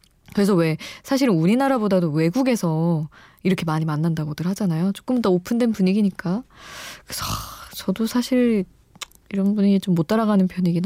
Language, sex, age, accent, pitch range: Korean, female, 20-39, native, 155-210 Hz